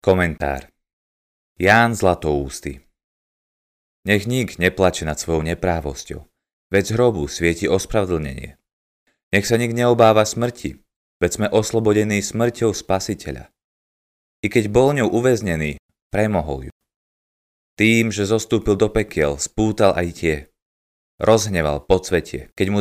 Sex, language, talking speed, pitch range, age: male, Slovak, 120 wpm, 75-110 Hz, 30-49